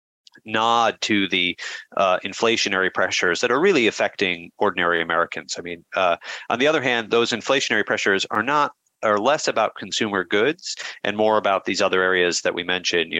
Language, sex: English, male